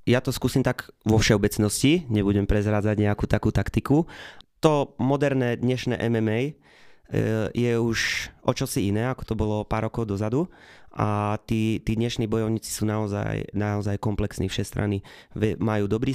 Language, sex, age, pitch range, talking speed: Slovak, male, 20-39, 105-115 Hz, 140 wpm